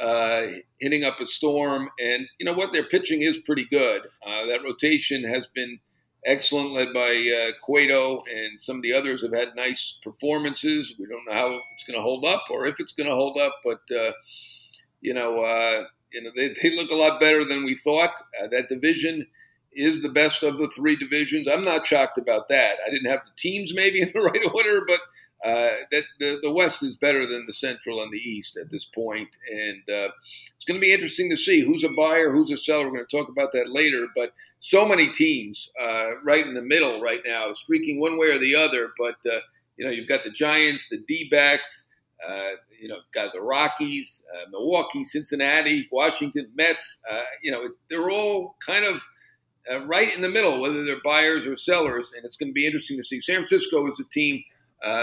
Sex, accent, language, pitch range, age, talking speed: male, American, English, 125-180 Hz, 50-69, 215 wpm